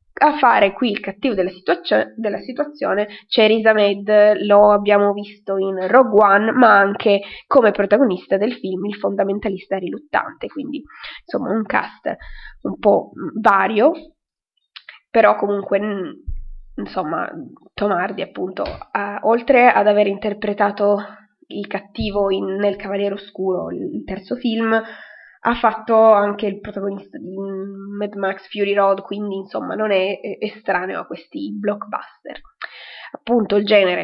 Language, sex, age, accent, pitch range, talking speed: Italian, female, 20-39, native, 195-225 Hz, 135 wpm